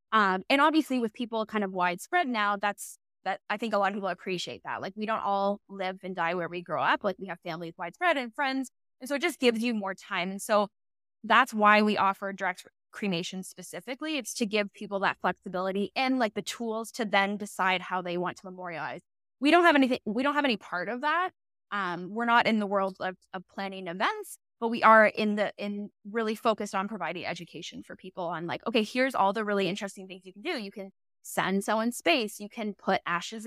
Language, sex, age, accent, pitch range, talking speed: English, female, 10-29, American, 190-235 Hz, 230 wpm